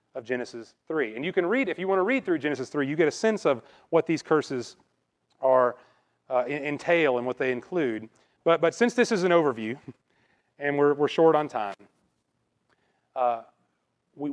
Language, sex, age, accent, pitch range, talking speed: English, male, 30-49, American, 125-165 Hz, 190 wpm